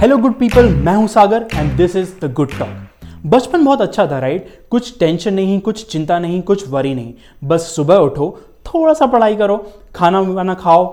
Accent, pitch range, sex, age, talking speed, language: Indian, 155-215 Hz, male, 20-39, 200 wpm, English